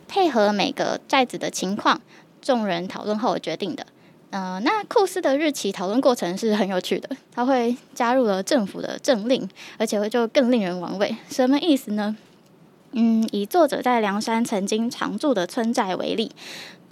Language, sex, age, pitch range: Chinese, female, 10-29, 200-280 Hz